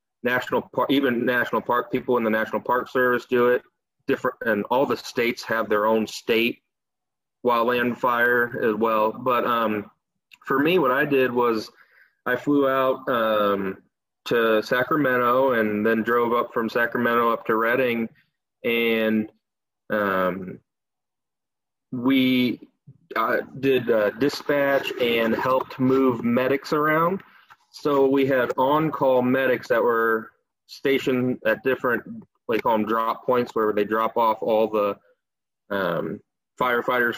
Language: English